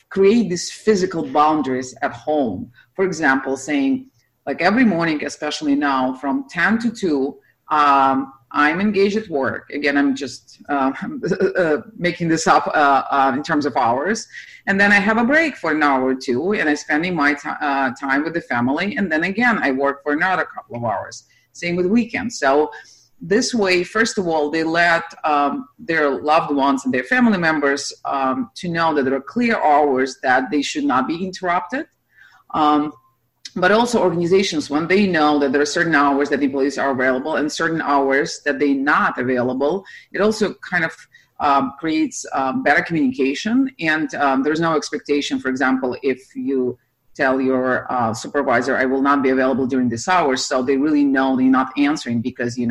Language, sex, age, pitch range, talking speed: English, female, 40-59, 135-185 Hz, 185 wpm